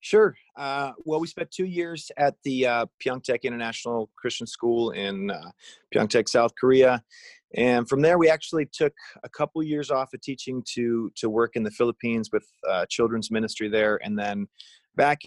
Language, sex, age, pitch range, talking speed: English, male, 30-49, 110-150 Hz, 175 wpm